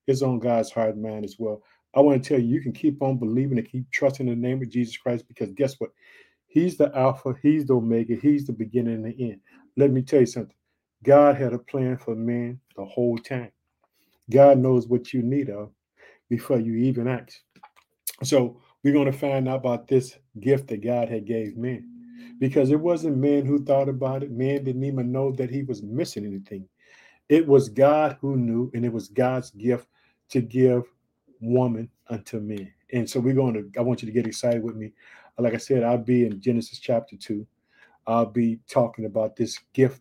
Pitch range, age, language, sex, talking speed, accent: 115-130 Hz, 50-69, English, male, 210 wpm, American